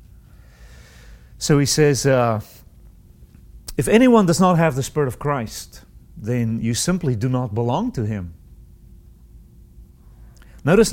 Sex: male